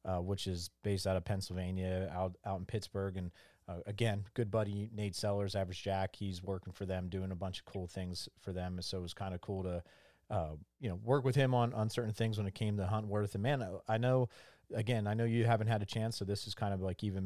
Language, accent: English, American